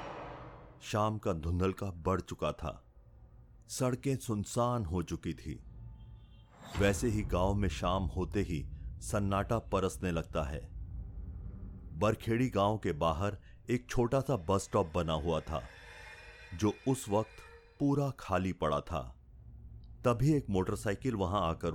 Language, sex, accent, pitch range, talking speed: Hindi, male, native, 90-115 Hz, 125 wpm